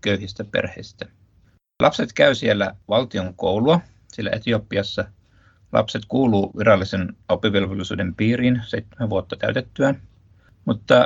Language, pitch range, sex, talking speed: Finnish, 100-115 Hz, male, 100 wpm